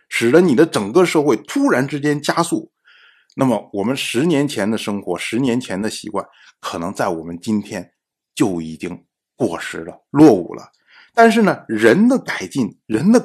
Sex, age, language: male, 50-69, Chinese